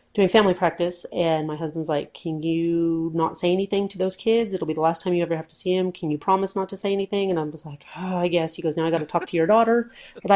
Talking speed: 295 wpm